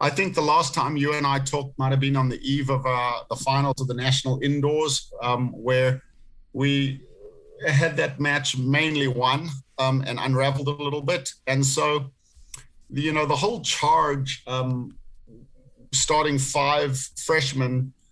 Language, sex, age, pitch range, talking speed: English, male, 50-69, 130-150 Hz, 160 wpm